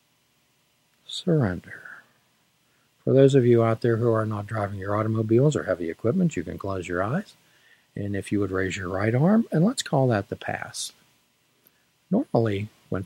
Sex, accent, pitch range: male, American, 100-120 Hz